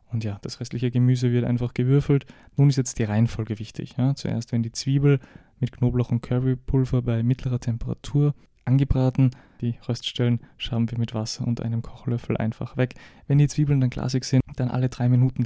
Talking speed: 185 wpm